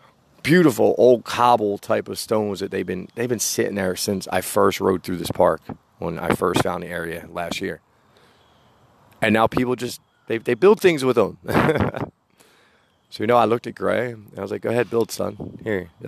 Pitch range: 95-115 Hz